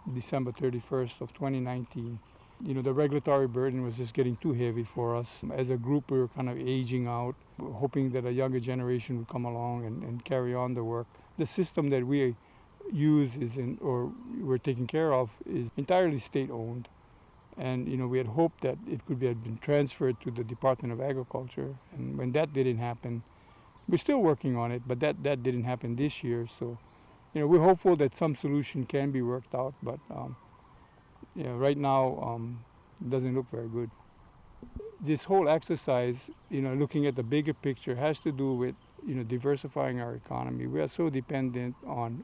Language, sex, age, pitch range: English, male, 50-69, 120-140 Hz